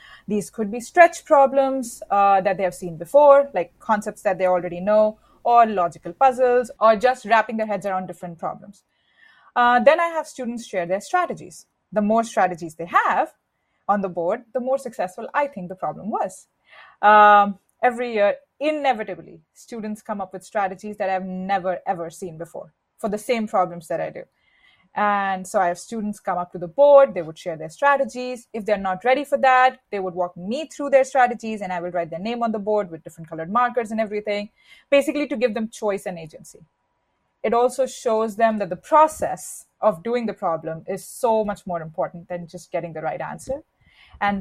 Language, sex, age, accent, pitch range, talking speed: English, female, 30-49, Indian, 185-245 Hz, 200 wpm